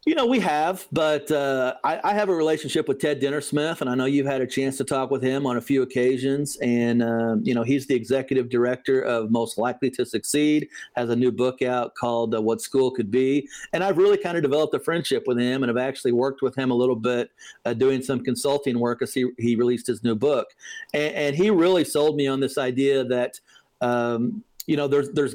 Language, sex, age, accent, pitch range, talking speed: English, male, 40-59, American, 125-160 Hz, 230 wpm